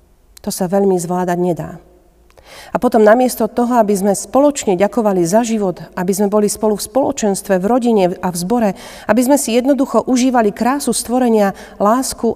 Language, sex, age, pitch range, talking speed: Slovak, female, 40-59, 180-215 Hz, 165 wpm